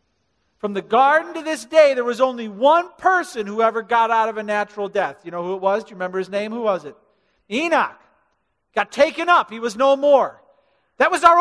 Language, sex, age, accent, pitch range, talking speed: English, male, 50-69, American, 170-255 Hz, 225 wpm